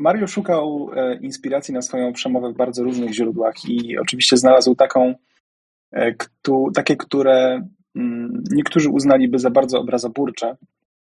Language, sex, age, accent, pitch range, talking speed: Polish, male, 30-49, native, 130-205 Hz, 110 wpm